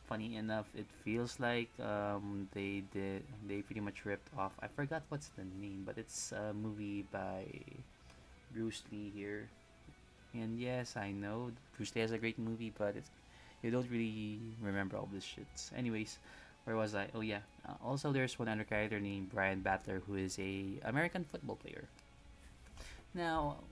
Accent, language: native, Filipino